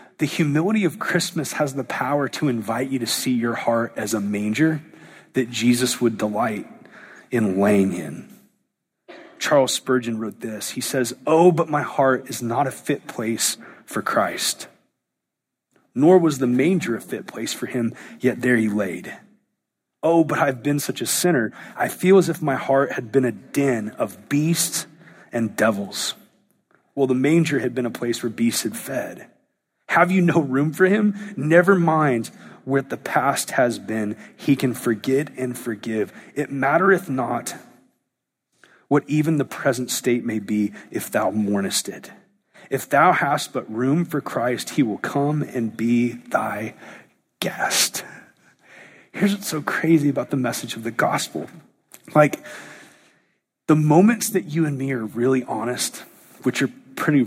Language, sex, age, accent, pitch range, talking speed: English, male, 30-49, American, 120-160 Hz, 160 wpm